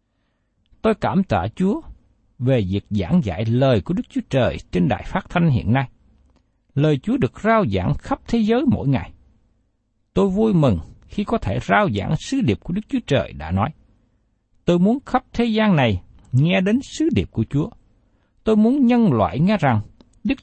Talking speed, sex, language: 190 wpm, male, Vietnamese